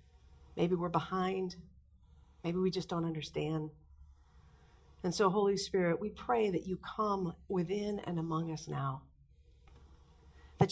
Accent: American